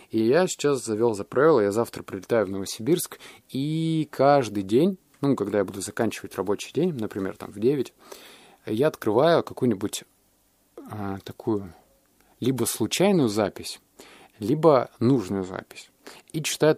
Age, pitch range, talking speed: 20-39, 100-120 Hz, 135 wpm